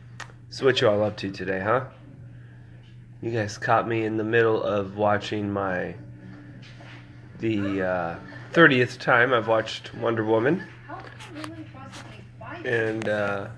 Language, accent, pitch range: English, American, 110-130 Hz